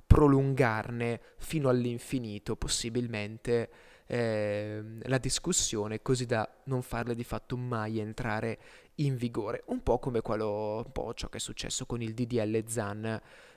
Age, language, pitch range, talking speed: 20-39, Italian, 115-155 Hz, 120 wpm